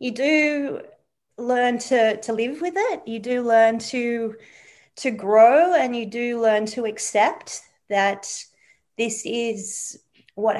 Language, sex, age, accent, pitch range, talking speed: English, female, 30-49, Australian, 195-230 Hz, 135 wpm